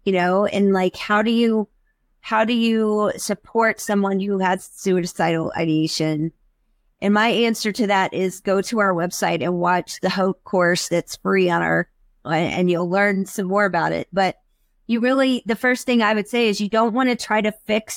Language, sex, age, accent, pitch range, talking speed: English, female, 30-49, American, 175-220 Hz, 195 wpm